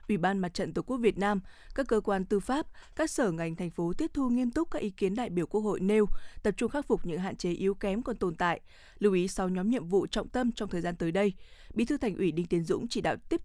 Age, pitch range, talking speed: 20-39, 180-230 Hz, 290 wpm